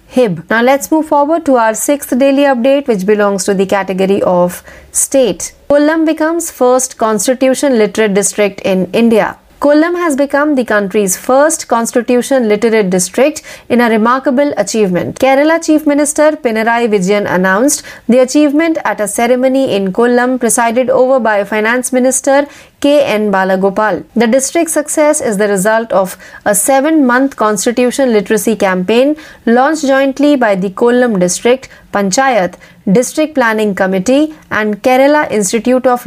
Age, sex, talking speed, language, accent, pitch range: 30-49, female, 145 wpm, Marathi, native, 210-275 Hz